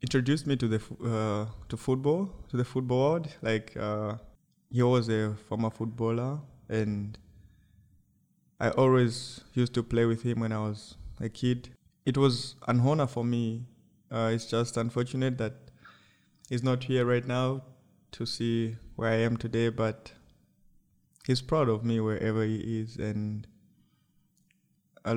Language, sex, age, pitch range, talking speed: English, male, 20-39, 110-125 Hz, 150 wpm